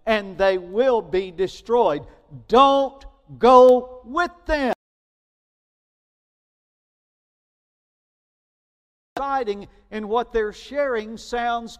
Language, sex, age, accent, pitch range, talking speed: English, male, 50-69, American, 180-240 Hz, 70 wpm